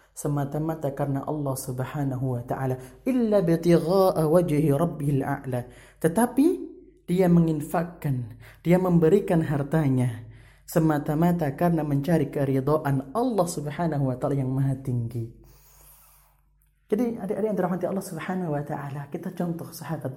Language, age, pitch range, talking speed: Indonesian, 30-49, 135-175 Hz, 105 wpm